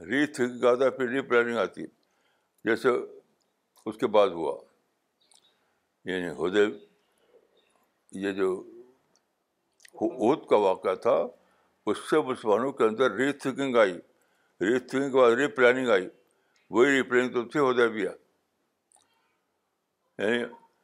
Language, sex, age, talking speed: Urdu, male, 60-79, 120 wpm